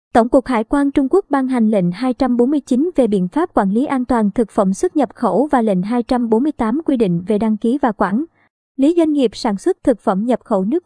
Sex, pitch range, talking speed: male, 220-275 Hz, 230 wpm